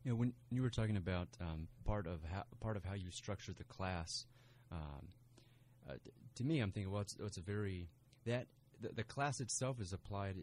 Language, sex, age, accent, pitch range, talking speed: English, male, 30-49, American, 90-125 Hz, 220 wpm